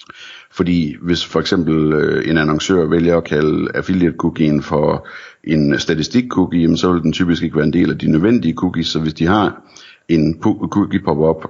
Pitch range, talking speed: 80-90 Hz, 160 wpm